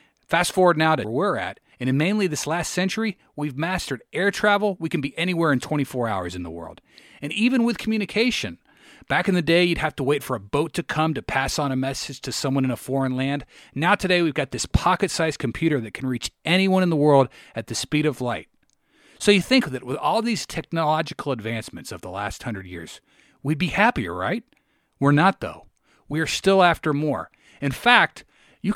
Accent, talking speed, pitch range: American, 215 wpm, 130-180 Hz